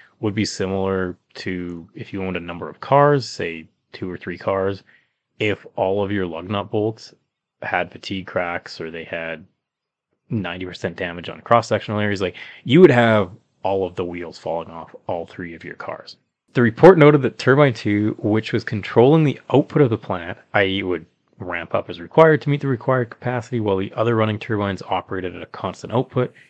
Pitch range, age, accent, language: 95-125 Hz, 20-39, American, English